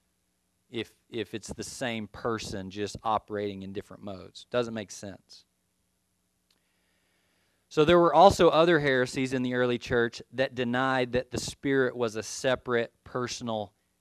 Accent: American